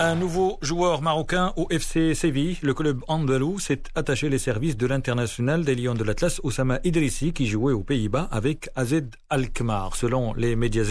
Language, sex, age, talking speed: Arabic, male, 40-59, 175 wpm